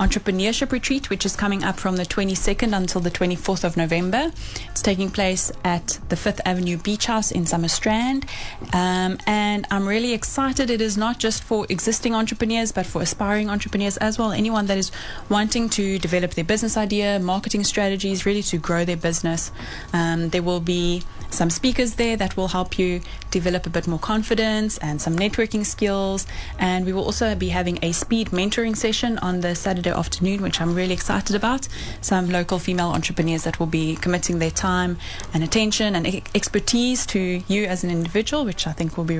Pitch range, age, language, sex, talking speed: 175-215 Hz, 10-29, English, female, 190 wpm